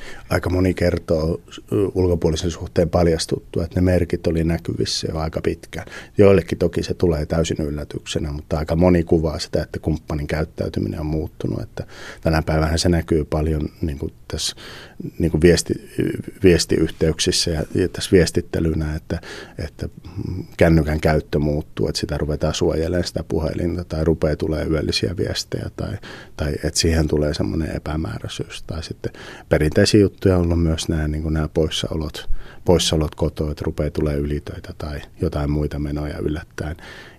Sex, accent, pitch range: male, native, 80-90 Hz